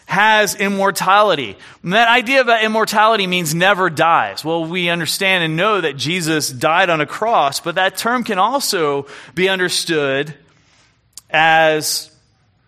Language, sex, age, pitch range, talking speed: English, male, 30-49, 145-195 Hz, 140 wpm